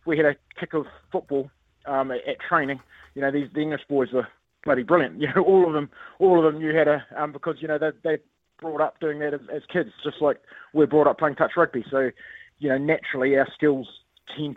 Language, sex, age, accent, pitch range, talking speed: English, male, 20-39, Australian, 130-155 Hz, 235 wpm